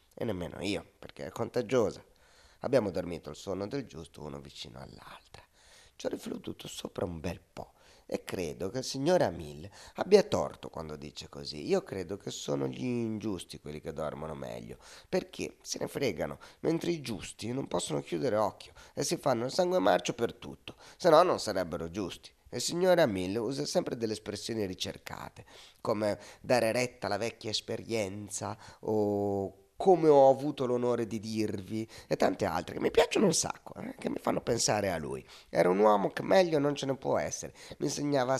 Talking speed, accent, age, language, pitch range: 180 wpm, native, 30-49, Italian, 90-125 Hz